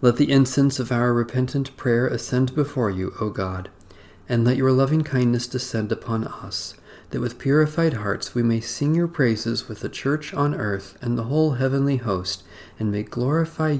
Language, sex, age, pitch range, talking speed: English, male, 40-59, 100-125 Hz, 185 wpm